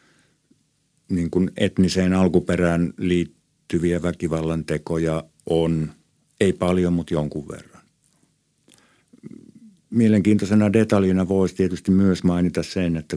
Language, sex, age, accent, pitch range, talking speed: Finnish, male, 50-69, native, 75-85 Hz, 80 wpm